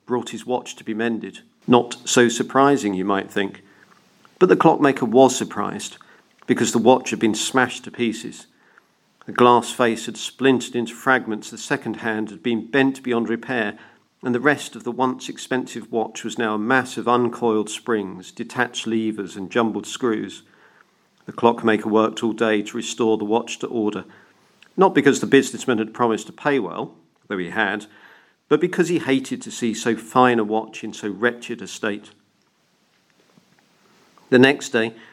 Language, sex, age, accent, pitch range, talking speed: English, male, 50-69, British, 110-125 Hz, 175 wpm